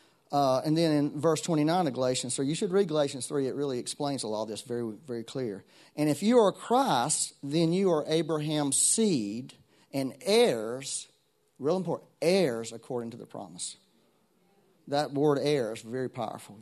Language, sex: English, male